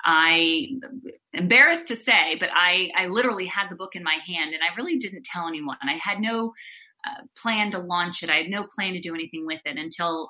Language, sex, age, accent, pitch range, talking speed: English, female, 30-49, American, 185-240 Hz, 220 wpm